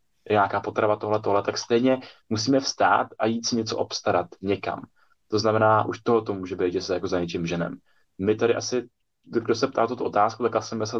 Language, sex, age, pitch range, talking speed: Czech, male, 20-39, 95-110 Hz, 205 wpm